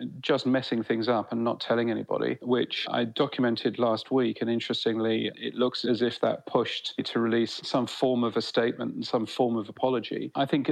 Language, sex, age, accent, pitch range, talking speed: English, male, 40-59, British, 115-130 Hz, 195 wpm